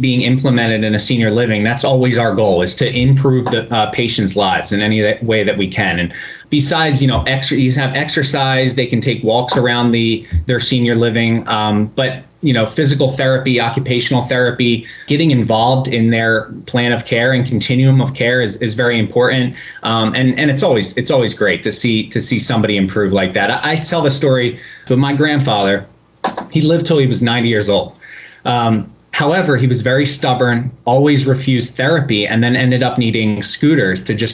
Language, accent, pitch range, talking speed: English, American, 110-135 Hz, 190 wpm